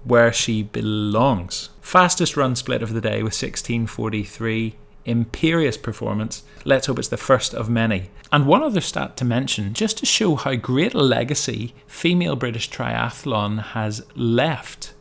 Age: 30-49